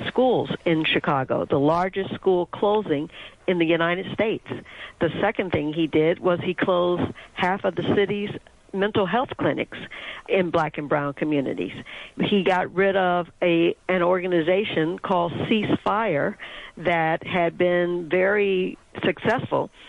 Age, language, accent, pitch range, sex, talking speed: 60-79, English, American, 165-190 Hz, female, 140 wpm